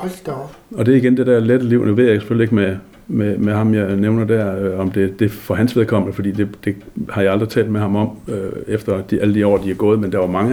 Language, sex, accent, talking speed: Danish, male, native, 285 wpm